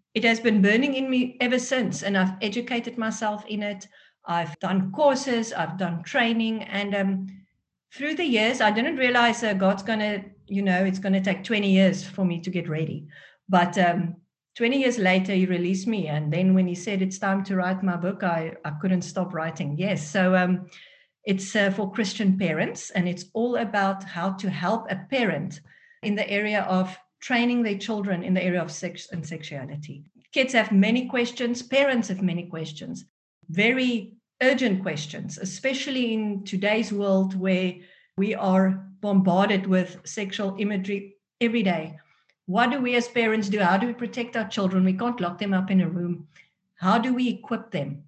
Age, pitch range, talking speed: 50-69, 185-225 Hz, 185 wpm